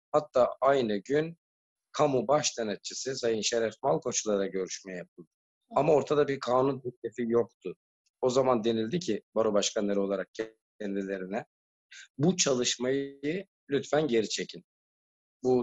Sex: male